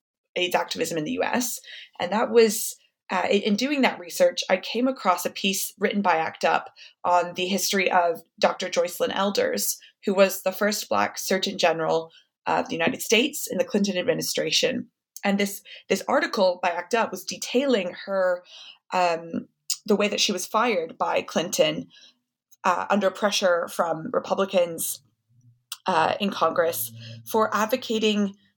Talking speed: 155 wpm